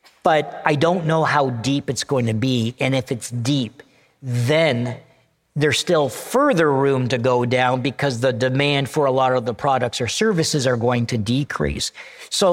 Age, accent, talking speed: 50-69, American, 180 wpm